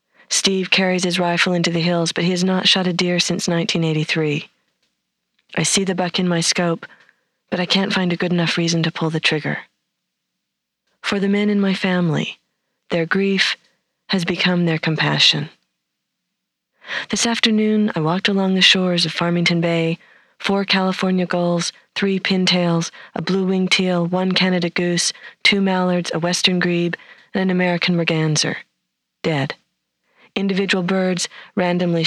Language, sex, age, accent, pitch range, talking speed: English, female, 40-59, American, 170-190 Hz, 150 wpm